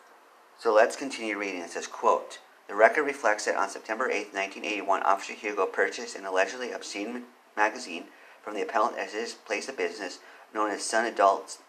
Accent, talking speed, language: American, 175 wpm, English